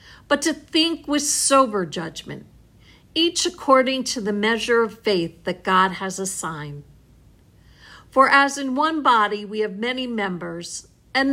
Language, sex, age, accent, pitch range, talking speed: English, female, 50-69, American, 175-260 Hz, 145 wpm